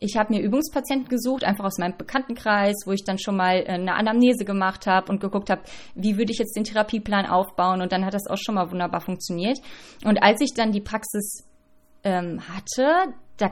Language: German